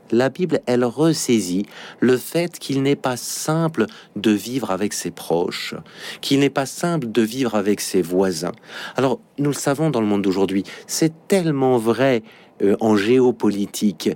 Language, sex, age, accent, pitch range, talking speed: French, male, 50-69, French, 110-145 Hz, 160 wpm